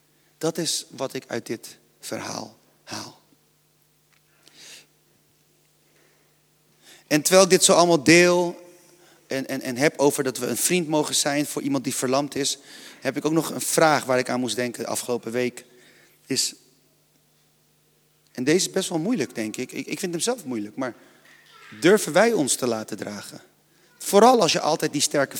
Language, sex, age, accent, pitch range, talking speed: Dutch, male, 40-59, Dutch, 140-175 Hz, 170 wpm